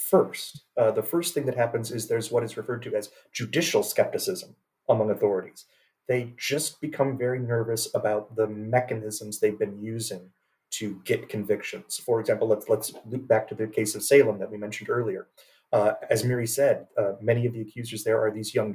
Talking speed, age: 190 wpm, 30-49